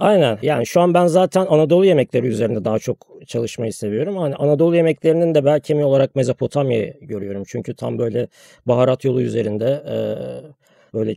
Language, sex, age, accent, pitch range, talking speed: Turkish, male, 40-59, native, 125-165 Hz, 155 wpm